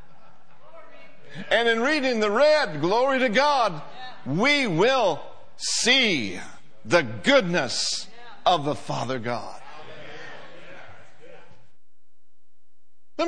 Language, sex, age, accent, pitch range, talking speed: English, male, 60-79, American, 200-255 Hz, 80 wpm